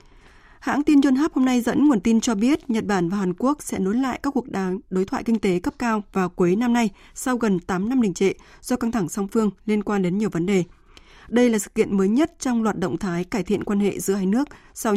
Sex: female